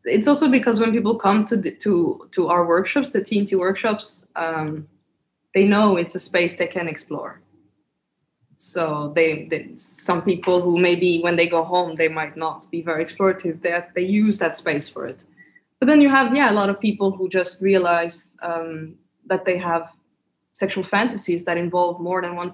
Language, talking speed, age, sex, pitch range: English, 190 wpm, 20-39, female, 170-205 Hz